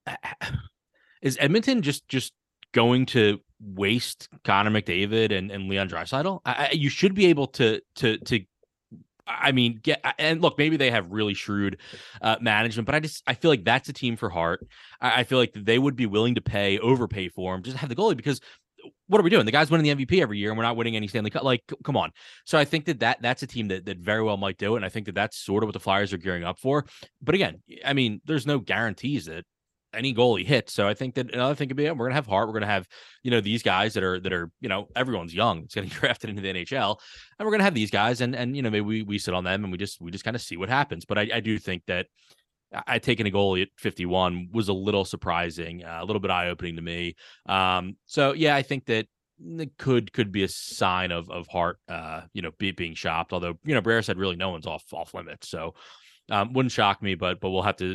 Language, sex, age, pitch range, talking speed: English, male, 20-39, 95-130 Hz, 265 wpm